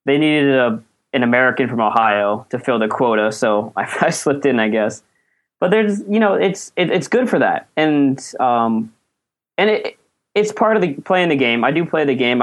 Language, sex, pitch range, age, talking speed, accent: English, male, 110-140 Hz, 20-39, 210 wpm, American